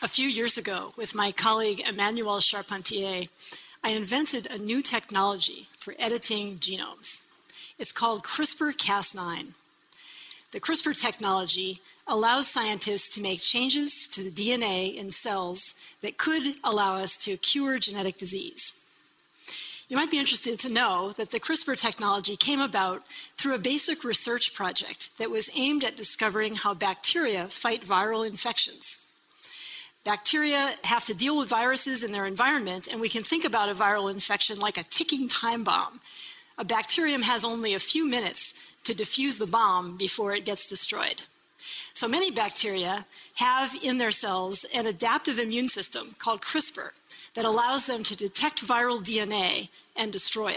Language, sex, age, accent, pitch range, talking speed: English, female, 40-59, American, 200-265 Hz, 150 wpm